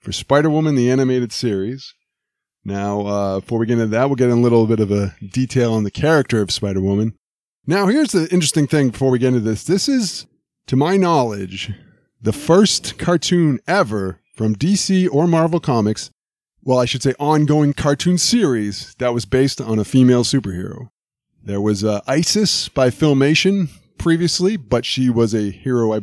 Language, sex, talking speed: English, male, 180 wpm